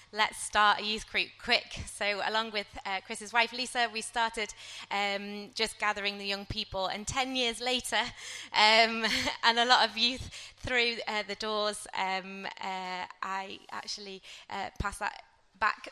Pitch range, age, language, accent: 200-230 Hz, 20-39, English, British